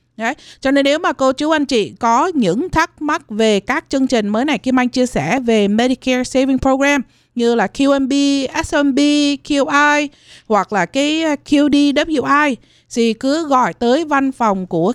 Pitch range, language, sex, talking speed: 210-275 Hz, Vietnamese, female, 175 wpm